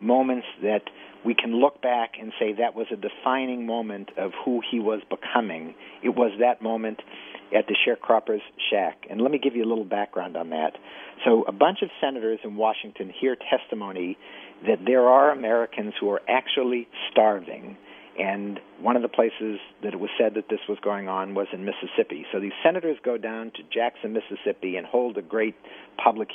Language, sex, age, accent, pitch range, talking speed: English, male, 50-69, American, 105-130 Hz, 190 wpm